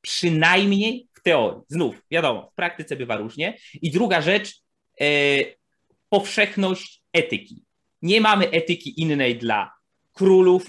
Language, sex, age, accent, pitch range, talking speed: Polish, male, 30-49, native, 135-180 Hz, 120 wpm